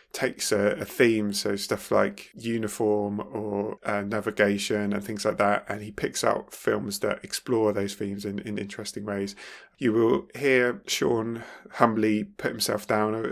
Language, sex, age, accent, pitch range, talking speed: English, male, 20-39, British, 105-115 Hz, 165 wpm